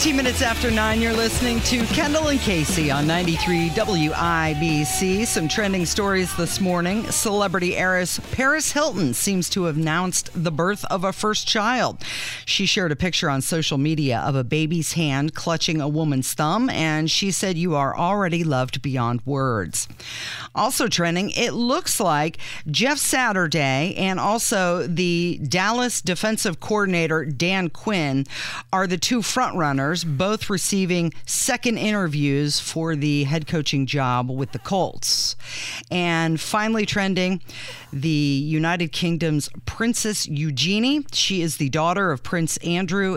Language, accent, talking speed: English, American, 140 wpm